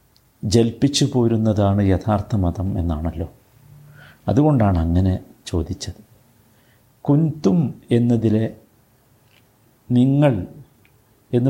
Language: Malayalam